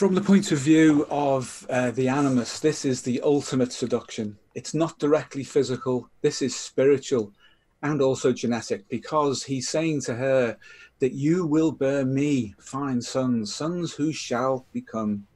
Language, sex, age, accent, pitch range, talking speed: English, male, 40-59, British, 115-140 Hz, 155 wpm